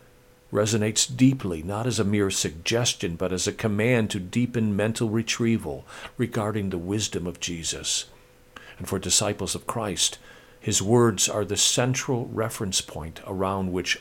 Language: English